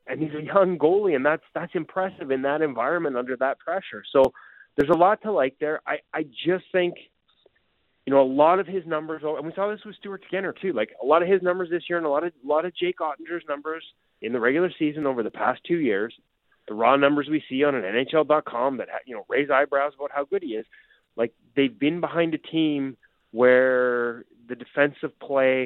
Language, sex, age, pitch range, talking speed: English, male, 30-49, 125-175 Hz, 225 wpm